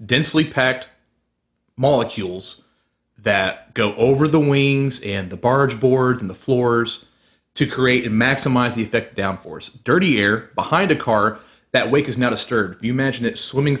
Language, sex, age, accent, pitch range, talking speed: English, male, 30-49, American, 105-125 Hz, 165 wpm